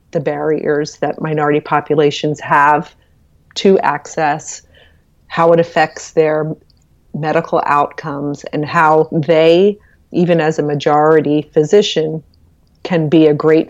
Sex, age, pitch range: female, 40-59, 150-165 Hz